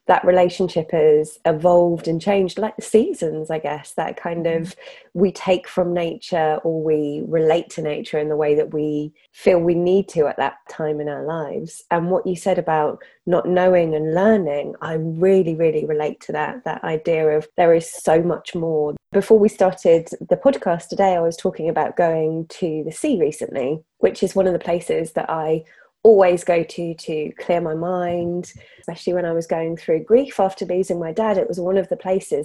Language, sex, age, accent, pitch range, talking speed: English, female, 20-39, British, 160-190 Hz, 200 wpm